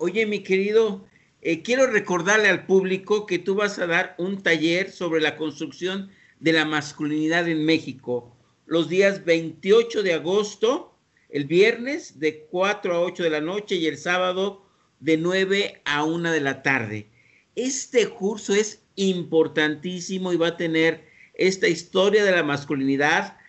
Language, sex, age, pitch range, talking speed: Spanish, male, 50-69, 155-200 Hz, 155 wpm